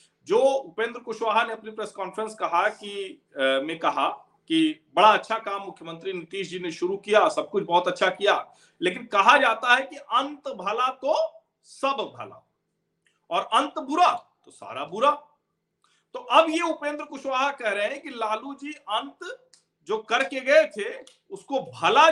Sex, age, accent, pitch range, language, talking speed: male, 40-59, native, 185-280 Hz, Hindi, 165 wpm